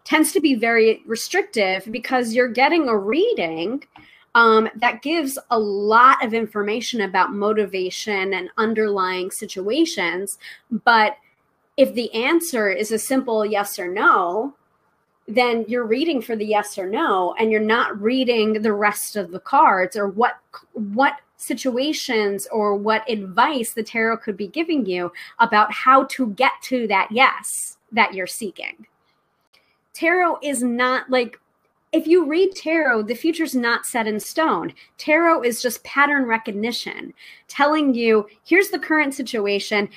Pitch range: 215-270 Hz